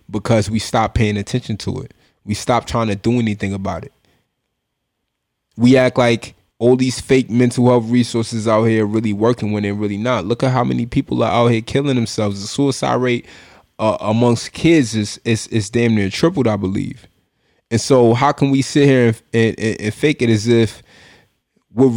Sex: male